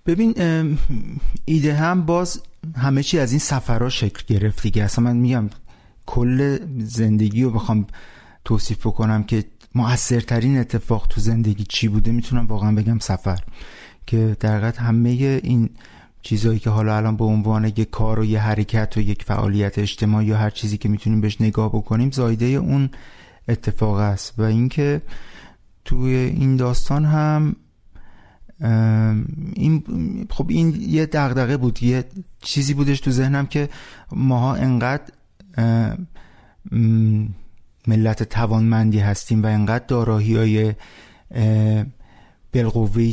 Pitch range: 110-130 Hz